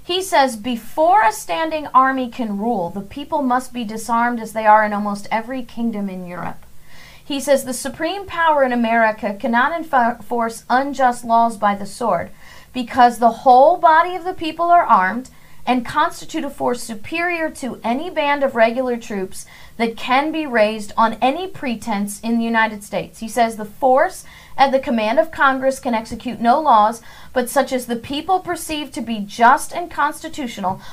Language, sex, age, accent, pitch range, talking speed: English, female, 40-59, American, 230-315 Hz, 175 wpm